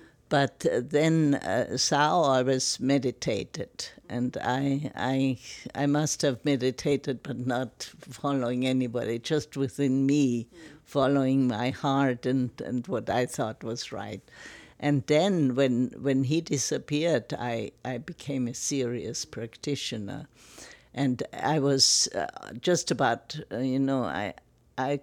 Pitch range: 125-145 Hz